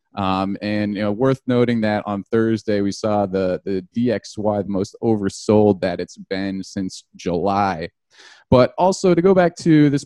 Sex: male